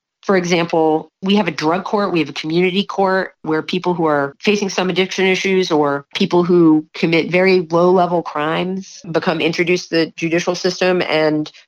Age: 30-49